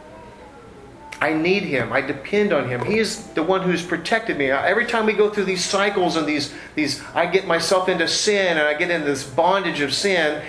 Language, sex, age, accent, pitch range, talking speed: English, male, 40-59, American, 135-185 Hz, 210 wpm